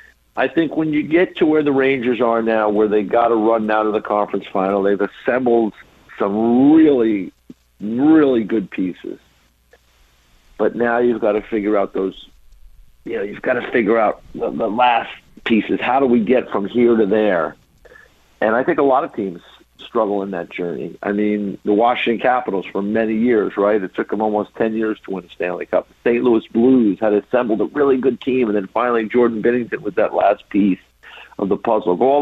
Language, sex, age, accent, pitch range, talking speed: English, male, 50-69, American, 105-125 Hz, 205 wpm